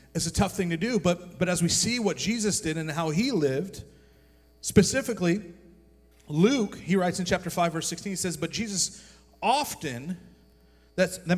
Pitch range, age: 125-180 Hz, 40-59